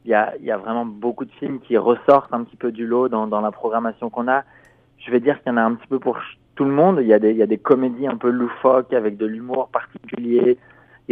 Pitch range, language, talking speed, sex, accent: 110-130 Hz, French, 290 wpm, male, French